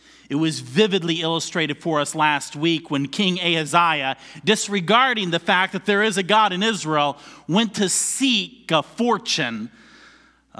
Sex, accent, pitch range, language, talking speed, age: male, American, 130-200 Hz, English, 155 wpm, 40-59